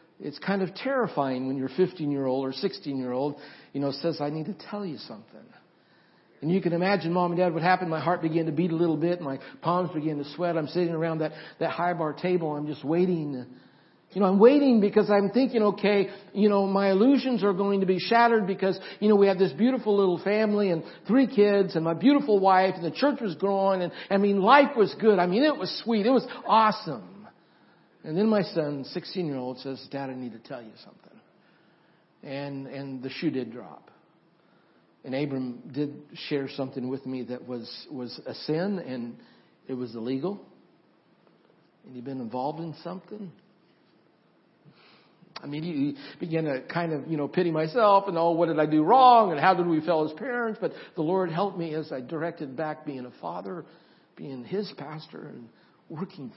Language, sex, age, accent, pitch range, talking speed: English, male, 60-79, American, 145-200 Hz, 200 wpm